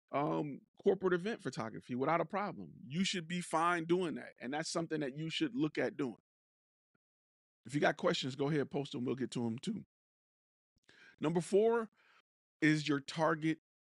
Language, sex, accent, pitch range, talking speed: English, male, American, 120-170 Hz, 175 wpm